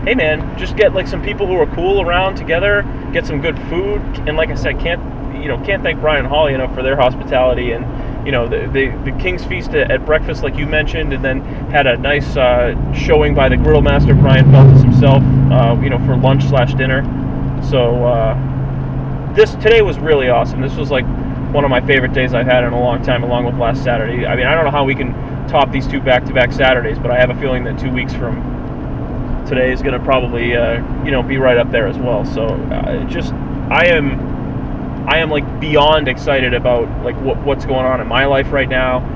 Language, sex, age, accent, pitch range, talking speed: English, male, 30-49, American, 125-140 Hz, 230 wpm